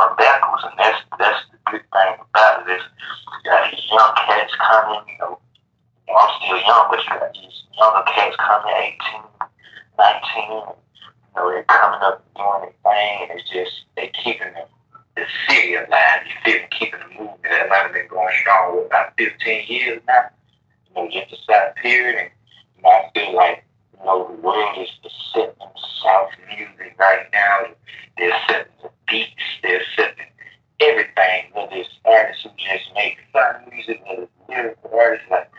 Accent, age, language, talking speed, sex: American, 30-49, English, 175 wpm, male